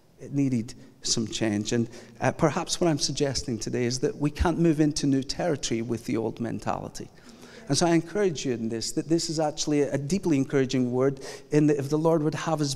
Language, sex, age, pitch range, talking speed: English, male, 40-59, 125-160 Hz, 210 wpm